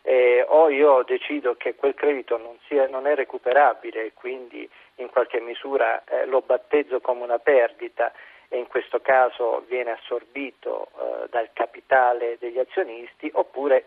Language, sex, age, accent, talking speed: Italian, male, 40-59, native, 150 wpm